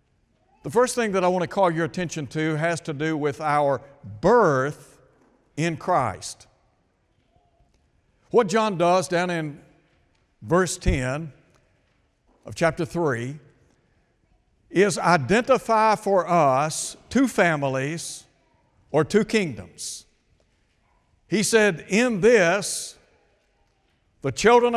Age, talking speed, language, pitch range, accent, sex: 60-79, 105 wpm, English, 145-195 Hz, American, male